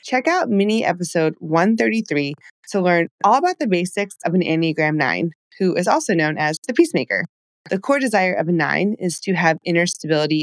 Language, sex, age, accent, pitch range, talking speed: English, female, 20-39, American, 160-210 Hz, 190 wpm